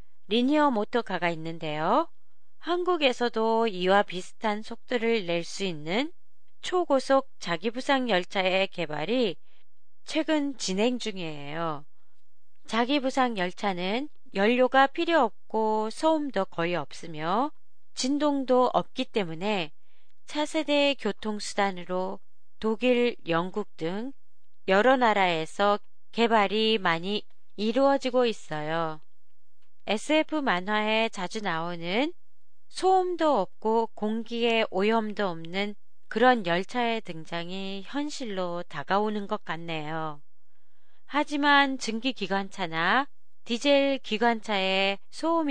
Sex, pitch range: female, 180-255 Hz